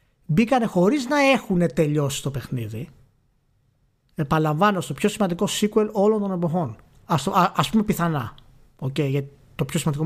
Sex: male